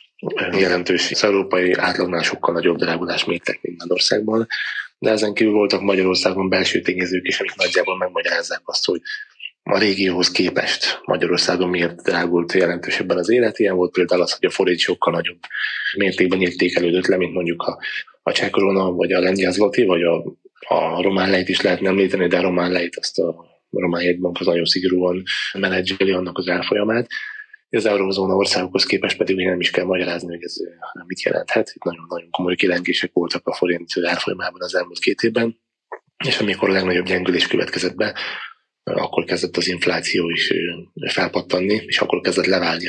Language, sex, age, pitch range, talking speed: Hungarian, male, 20-39, 90-95 Hz, 165 wpm